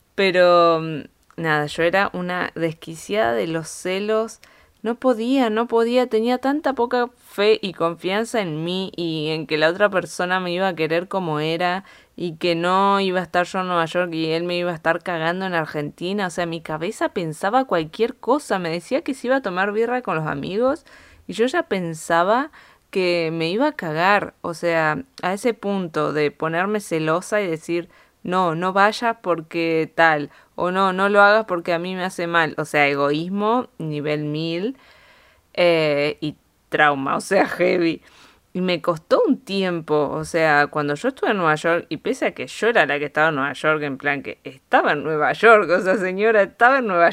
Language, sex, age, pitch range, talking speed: Spanish, female, 20-39, 160-205 Hz, 195 wpm